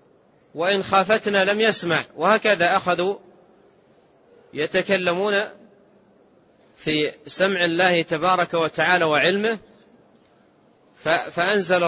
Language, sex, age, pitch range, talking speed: Arabic, male, 30-49, 155-185 Hz, 70 wpm